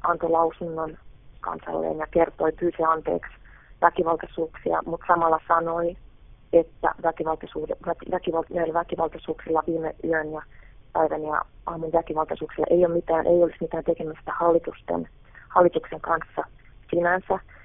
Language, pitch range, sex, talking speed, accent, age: Finnish, 155-170 Hz, female, 110 wpm, native, 30-49